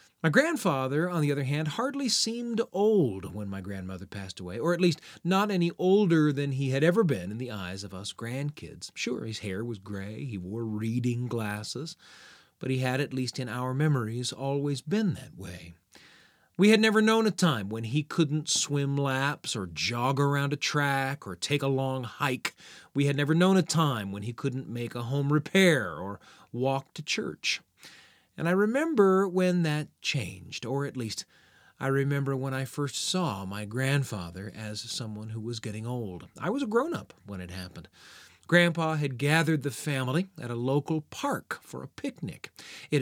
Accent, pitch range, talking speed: American, 120-160 Hz, 185 wpm